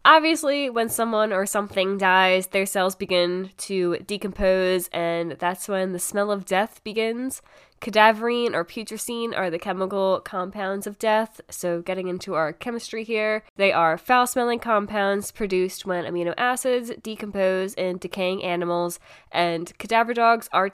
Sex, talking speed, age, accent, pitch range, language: female, 145 wpm, 10-29, American, 180-215 Hz, English